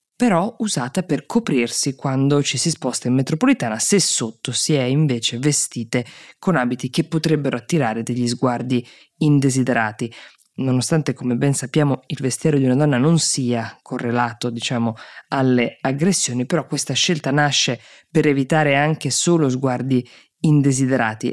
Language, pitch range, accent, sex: Italian, 125-155 Hz, native, female